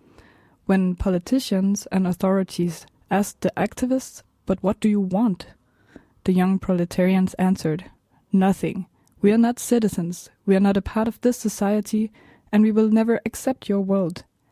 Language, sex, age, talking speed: English, female, 20-39, 150 wpm